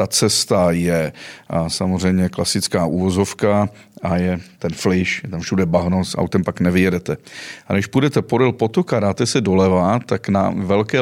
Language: Czech